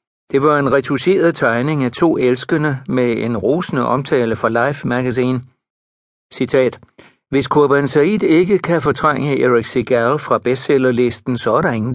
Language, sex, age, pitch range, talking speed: Danish, male, 60-79, 120-150 Hz, 145 wpm